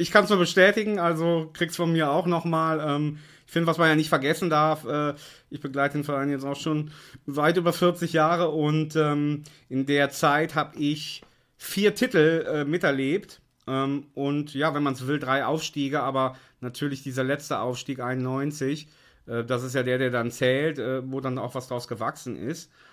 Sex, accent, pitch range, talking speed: male, German, 125-150 Hz, 195 wpm